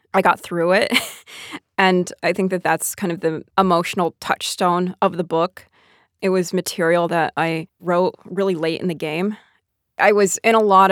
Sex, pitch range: female, 165-200 Hz